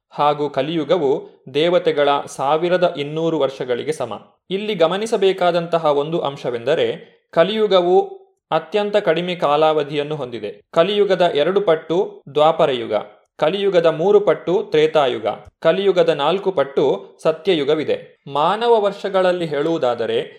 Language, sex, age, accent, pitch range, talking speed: Kannada, male, 30-49, native, 155-210 Hz, 90 wpm